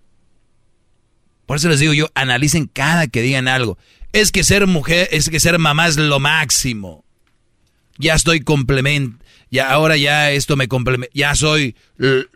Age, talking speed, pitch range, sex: 40-59, 160 wpm, 110-145 Hz, male